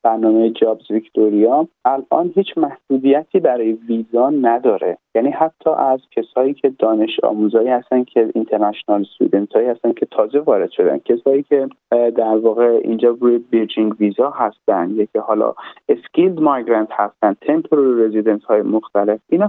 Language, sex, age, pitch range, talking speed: Persian, male, 30-49, 110-150 Hz, 140 wpm